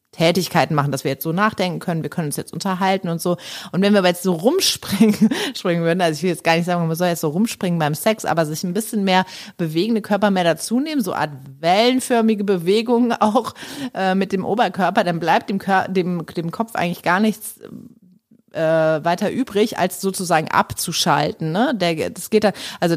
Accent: German